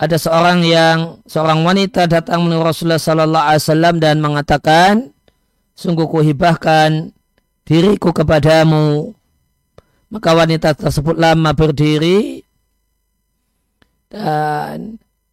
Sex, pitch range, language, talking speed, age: male, 155-175 Hz, Indonesian, 95 wpm, 40-59